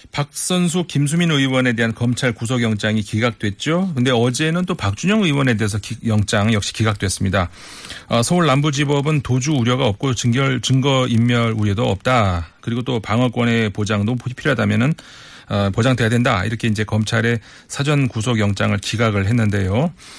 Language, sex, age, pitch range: Korean, male, 40-59, 105-140 Hz